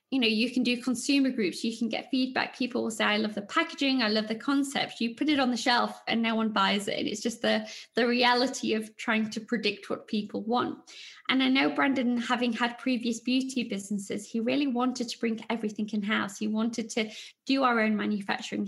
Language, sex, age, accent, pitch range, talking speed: English, female, 20-39, British, 215-260 Hz, 220 wpm